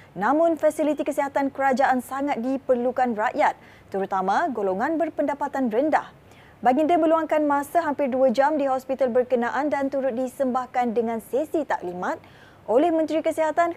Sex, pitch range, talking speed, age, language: female, 245-300 Hz, 125 wpm, 20-39, Malay